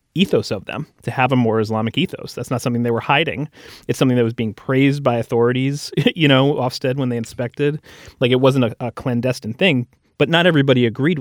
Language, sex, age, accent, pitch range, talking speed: English, male, 30-49, American, 115-135 Hz, 215 wpm